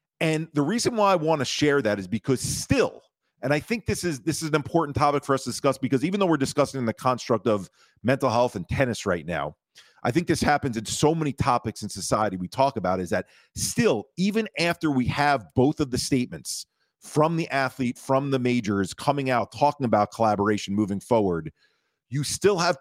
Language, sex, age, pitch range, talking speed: English, male, 40-59, 125-165 Hz, 210 wpm